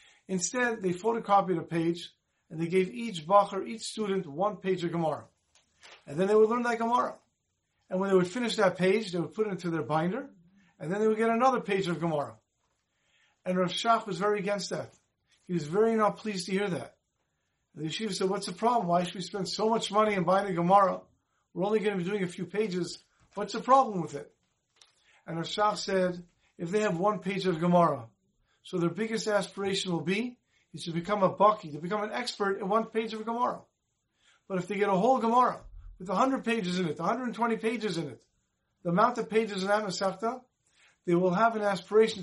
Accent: American